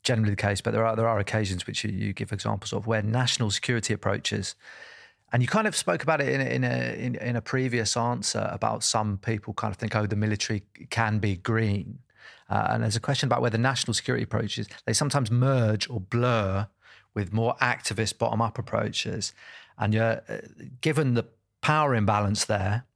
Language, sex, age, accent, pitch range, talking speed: English, male, 30-49, British, 105-120 Hz, 195 wpm